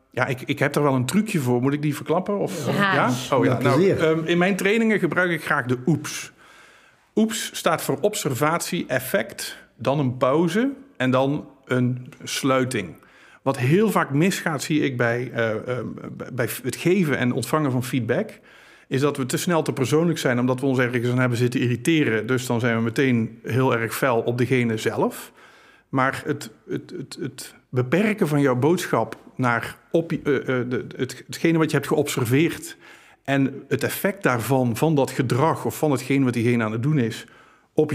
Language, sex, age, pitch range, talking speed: Dutch, male, 50-69, 120-160 Hz, 175 wpm